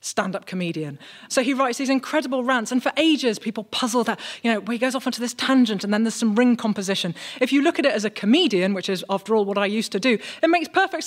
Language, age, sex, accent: English, 30-49, female, British